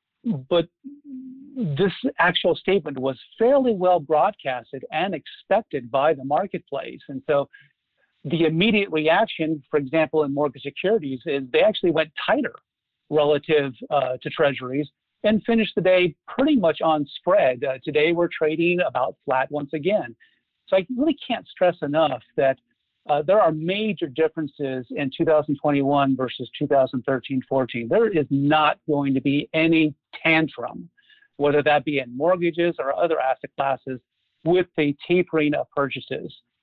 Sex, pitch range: male, 140-175 Hz